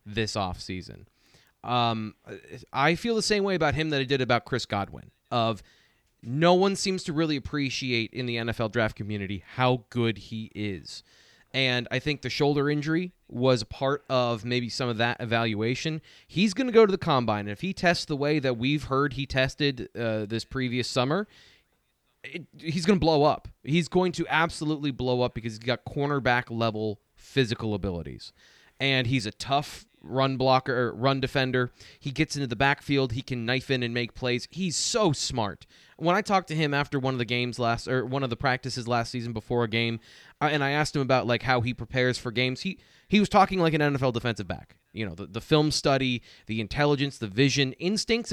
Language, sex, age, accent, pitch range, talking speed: English, male, 30-49, American, 115-150 Hz, 205 wpm